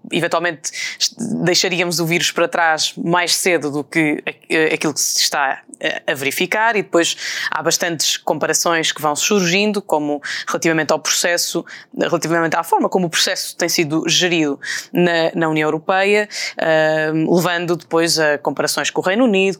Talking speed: 150 wpm